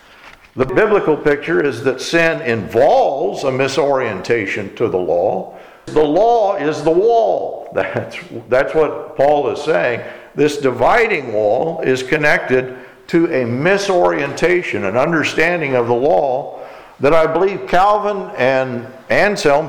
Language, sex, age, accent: English, male, 60-79, American